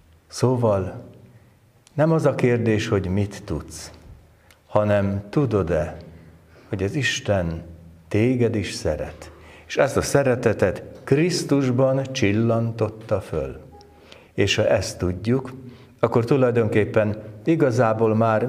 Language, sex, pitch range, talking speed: Hungarian, male, 90-120 Hz, 100 wpm